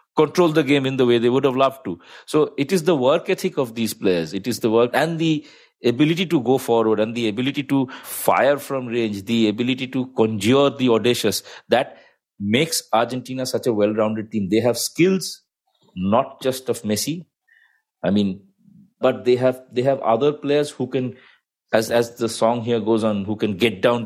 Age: 50-69